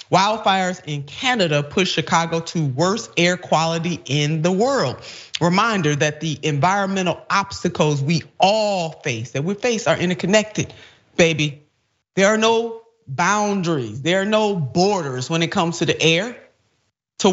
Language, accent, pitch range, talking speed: English, American, 145-180 Hz, 140 wpm